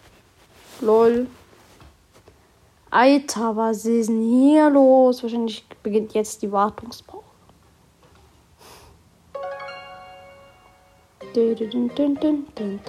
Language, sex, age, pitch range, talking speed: German, female, 30-49, 185-265 Hz, 55 wpm